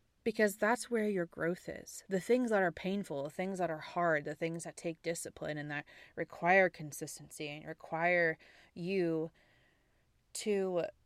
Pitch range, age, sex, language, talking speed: 165-195 Hz, 20-39, female, English, 155 wpm